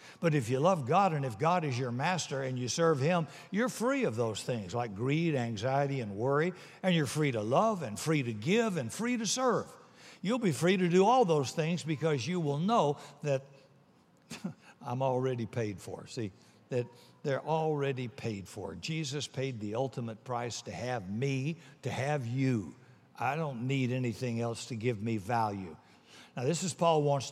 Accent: American